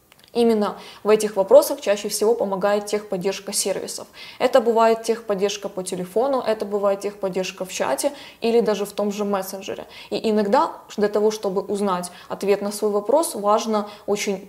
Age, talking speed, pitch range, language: 20-39, 155 wpm, 200-225 Hz, Russian